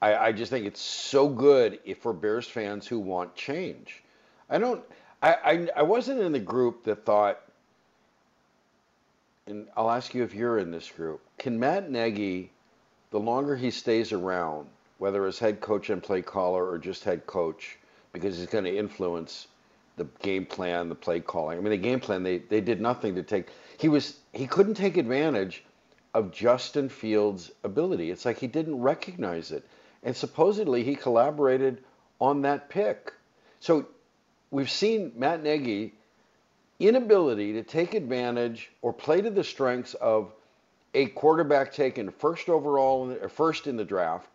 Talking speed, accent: 160 wpm, American